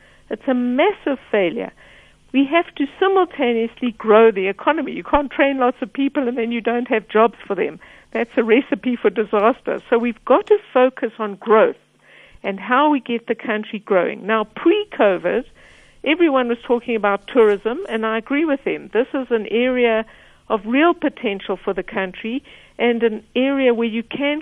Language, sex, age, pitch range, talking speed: English, female, 60-79, 220-275 Hz, 175 wpm